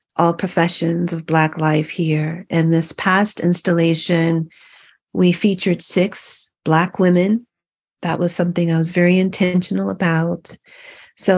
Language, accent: English, American